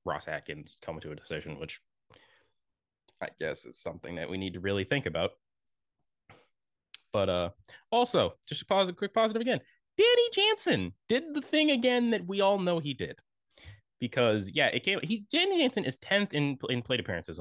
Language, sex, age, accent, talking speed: English, male, 20-39, American, 185 wpm